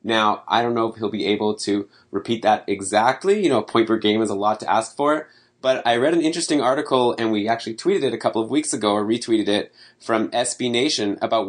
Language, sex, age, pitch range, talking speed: English, male, 20-39, 105-120 Hz, 245 wpm